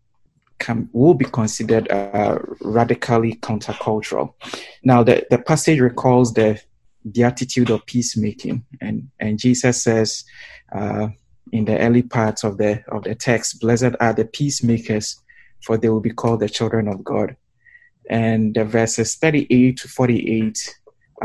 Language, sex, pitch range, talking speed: English, male, 110-125 Hz, 140 wpm